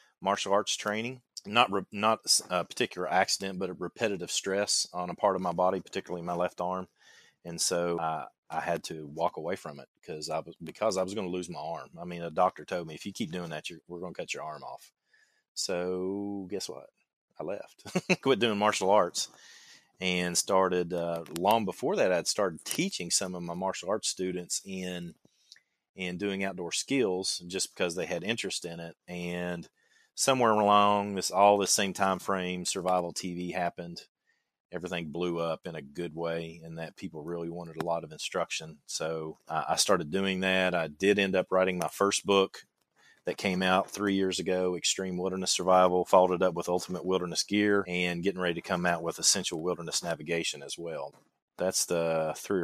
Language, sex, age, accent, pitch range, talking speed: English, male, 30-49, American, 85-95 Hz, 195 wpm